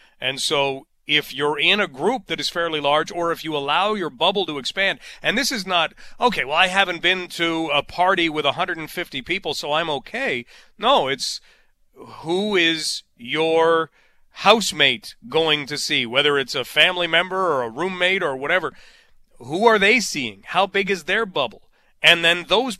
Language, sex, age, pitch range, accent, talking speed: English, male, 40-59, 155-200 Hz, American, 180 wpm